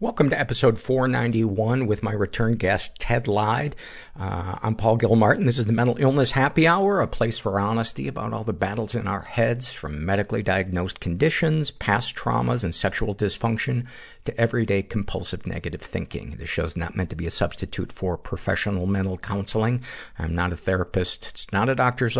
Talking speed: 180 wpm